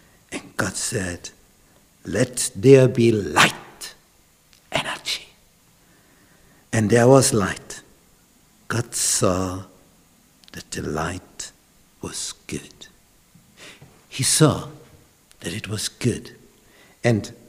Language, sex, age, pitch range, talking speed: English, male, 60-79, 100-135 Hz, 85 wpm